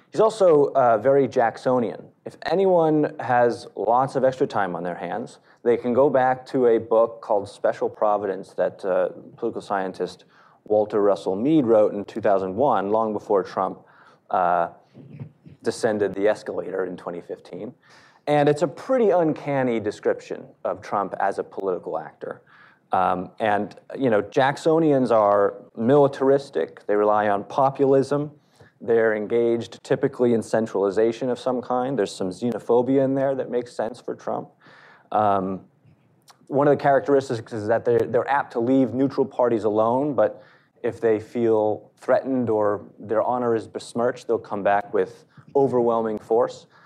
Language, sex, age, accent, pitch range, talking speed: English, male, 30-49, American, 105-140 Hz, 150 wpm